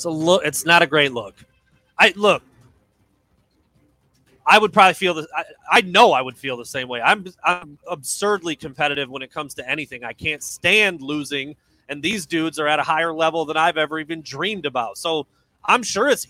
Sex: male